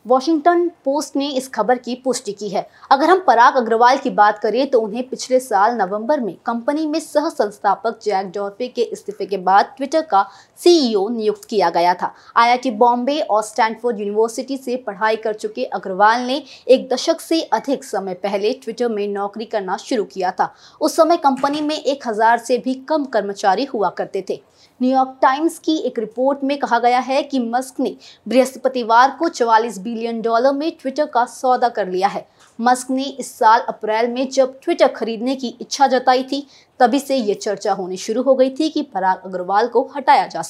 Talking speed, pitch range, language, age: 140 wpm, 220-275 Hz, Hindi, 20-39